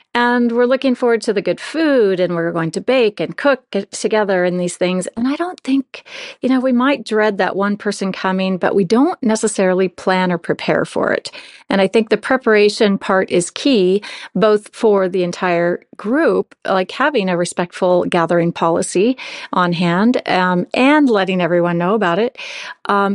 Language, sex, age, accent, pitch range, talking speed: English, female, 40-59, American, 180-245 Hz, 180 wpm